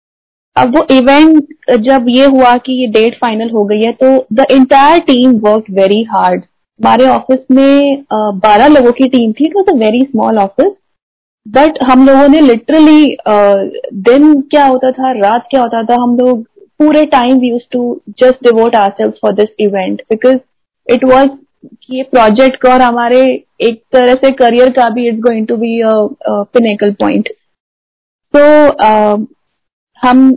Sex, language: female, Hindi